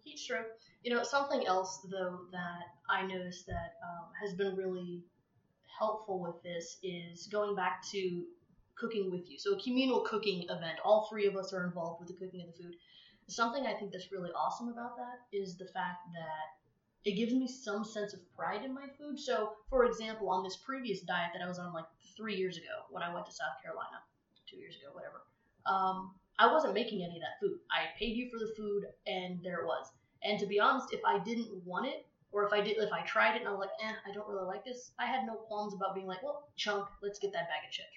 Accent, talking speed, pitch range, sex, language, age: American, 235 wpm, 180-220 Hz, female, English, 20-39